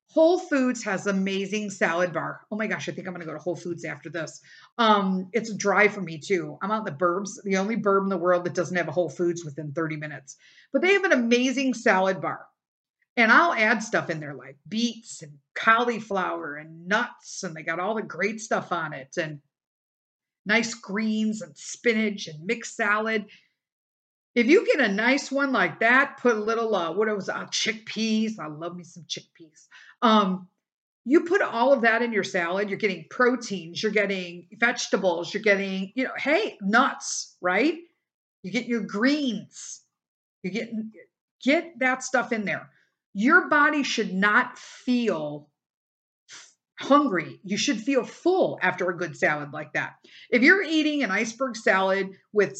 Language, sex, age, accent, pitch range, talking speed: English, female, 50-69, American, 180-240 Hz, 180 wpm